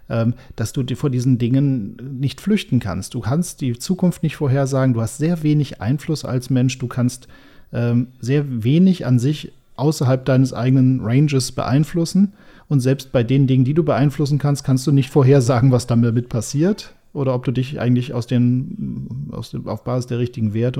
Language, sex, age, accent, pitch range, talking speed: German, male, 40-59, German, 120-140 Hz, 180 wpm